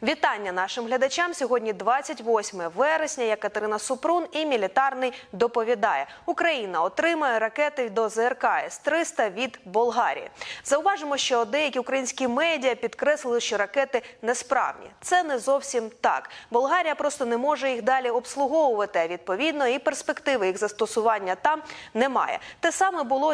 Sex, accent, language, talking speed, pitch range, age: female, native, Ukrainian, 130 wpm, 215-280 Hz, 20-39